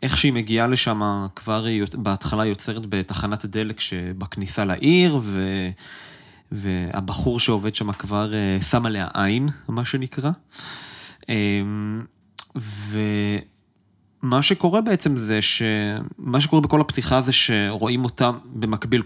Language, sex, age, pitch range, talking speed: Hebrew, male, 20-39, 105-130 Hz, 105 wpm